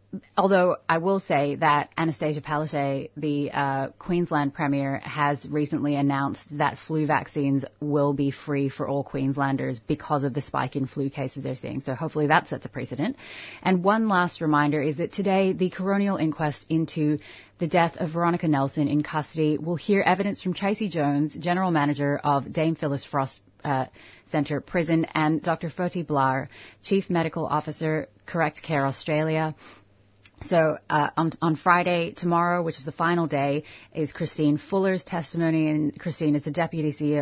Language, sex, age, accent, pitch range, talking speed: English, female, 30-49, American, 145-170 Hz, 165 wpm